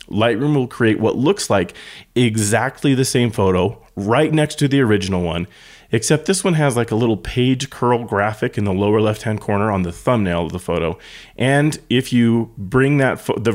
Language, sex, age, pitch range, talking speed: English, male, 30-49, 100-130 Hz, 190 wpm